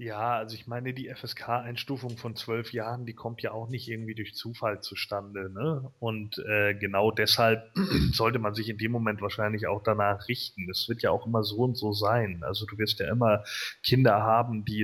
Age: 30-49